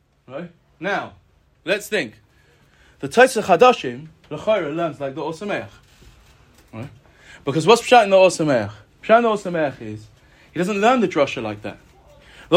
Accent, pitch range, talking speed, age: British, 160-245 Hz, 150 wpm, 30-49